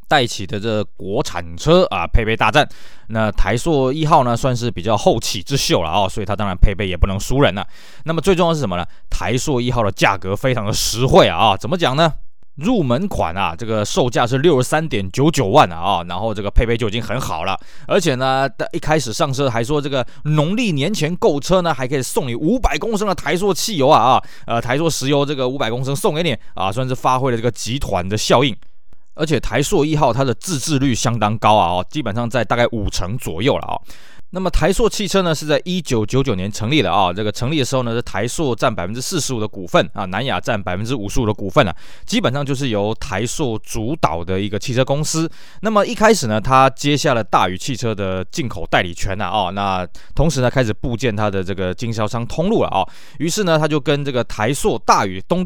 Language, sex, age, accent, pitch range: Chinese, male, 20-39, native, 105-150 Hz